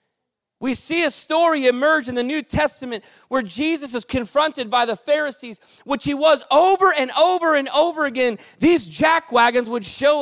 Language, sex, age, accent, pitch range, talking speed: English, male, 30-49, American, 245-320 Hz, 175 wpm